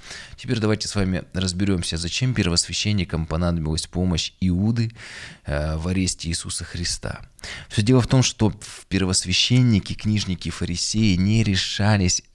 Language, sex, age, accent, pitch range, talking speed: Russian, male, 20-39, native, 85-100 Hz, 115 wpm